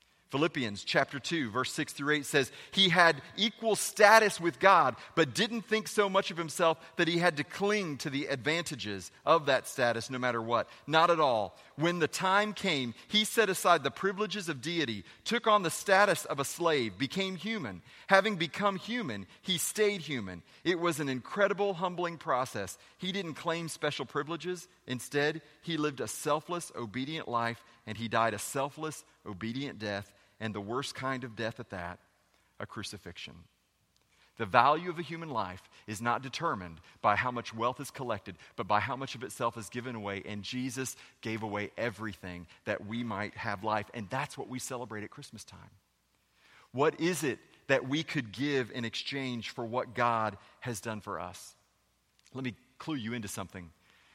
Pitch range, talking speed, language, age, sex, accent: 110-170 Hz, 180 wpm, English, 40-59, male, American